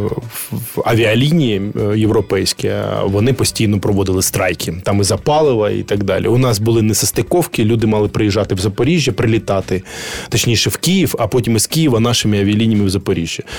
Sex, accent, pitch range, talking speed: male, native, 100-125 Hz, 150 wpm